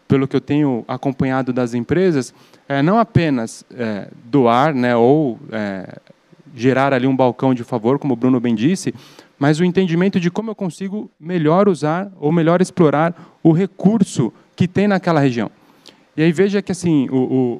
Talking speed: 175 wpm